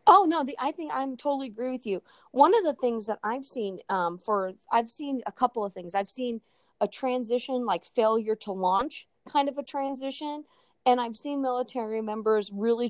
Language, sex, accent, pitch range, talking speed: English, female, American, 195-255 Hz, 200 wpm